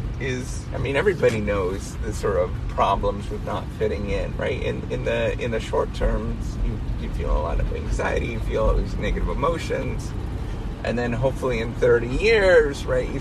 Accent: American